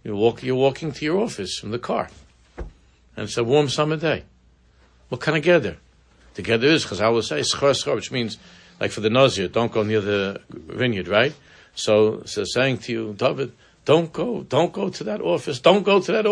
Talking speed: 210 wpm